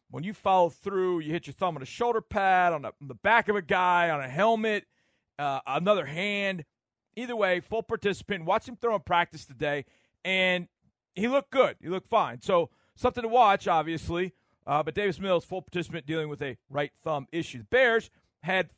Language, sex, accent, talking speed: English, male, American, 200 wpm